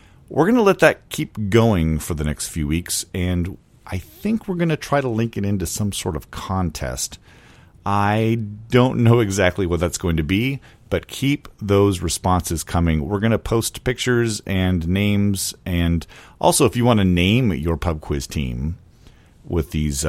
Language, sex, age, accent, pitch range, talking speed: English, male, 40-59, American, 80-115 Hz, 180 wpm